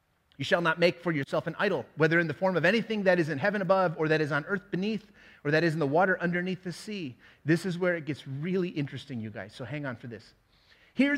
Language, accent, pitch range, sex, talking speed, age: English, American, 155-225 Hz, male, 265 wpm, 30-49